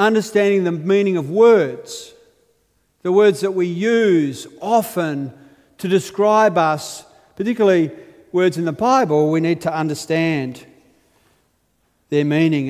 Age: 40-59